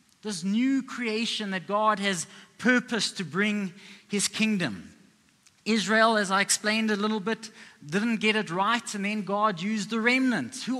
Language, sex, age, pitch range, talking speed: English, male, 30-49, 205-240 Hz, 160 wpm